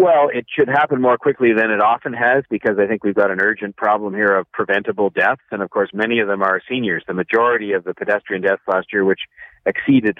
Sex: male